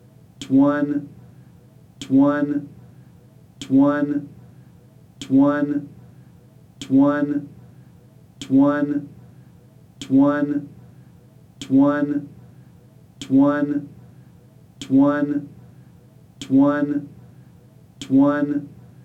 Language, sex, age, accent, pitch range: English, male, 40-59, American, 140-145 Hz